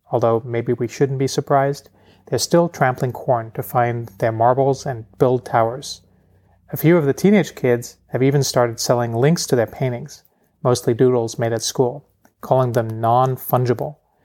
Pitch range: 115-140 Hz